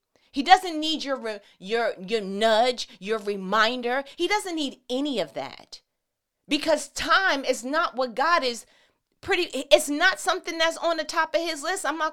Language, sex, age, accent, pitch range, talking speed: English, female, 30-49, American, 245-325 Hz, 175 wpm